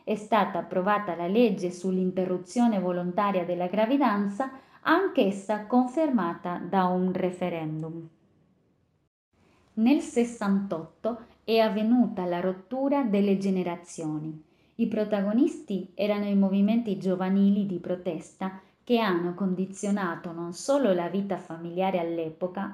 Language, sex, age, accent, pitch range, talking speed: Italian, female, 20-39, native, 180-240 Hz, 105 wpm